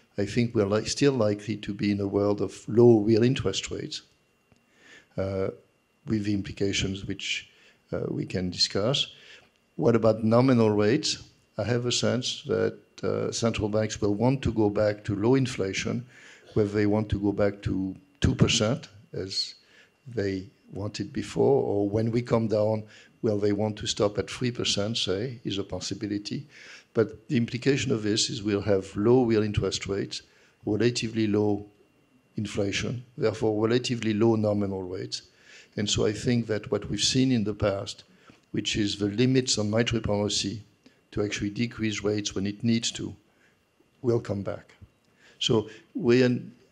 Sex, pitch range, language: male, 100-115 Hz, English